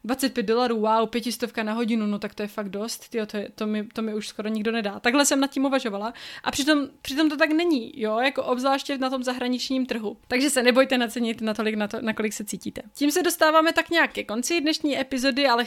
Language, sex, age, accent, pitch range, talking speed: Czech, female, 20-39, native, 215-260 Hz, 235 wpm